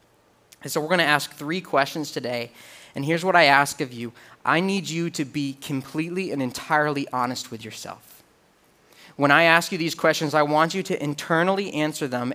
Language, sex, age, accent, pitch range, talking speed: English, male, 20-39, American, 140-180 Hz, 190 wpm